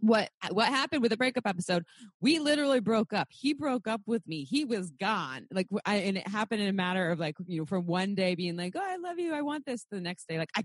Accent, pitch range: American, 175-220 Hz